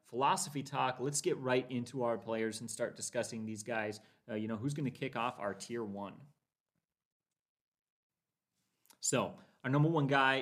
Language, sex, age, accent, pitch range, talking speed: English, male, 30-49, American, 110-140 Hz, 165 wpm